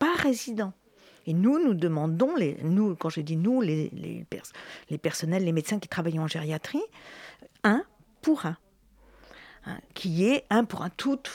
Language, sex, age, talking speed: French, female, 50-69, 175 wpm